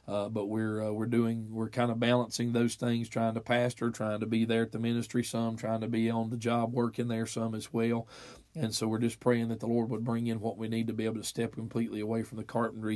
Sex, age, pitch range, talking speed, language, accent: male, 40-59, 110-125 Hz, 270 wpm, English, American